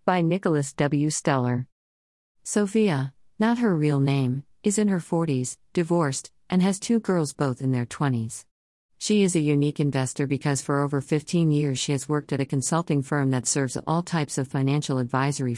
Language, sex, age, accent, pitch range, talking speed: English, female, 50-69, American, 135-160 Hz, 175 wpm